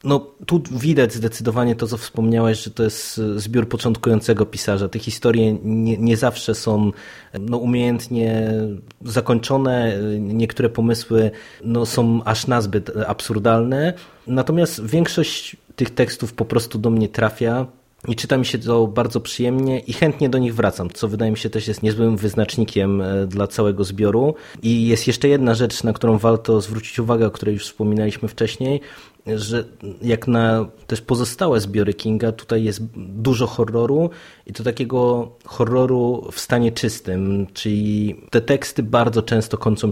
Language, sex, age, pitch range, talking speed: Polish, male, 20-39, 105-120 Hz, 150 wpm